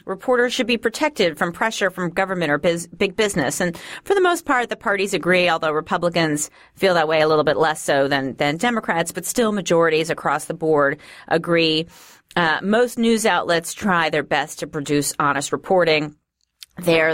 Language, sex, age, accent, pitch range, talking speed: English, female, 40-59, American, 155-210 Hz, 180 wpm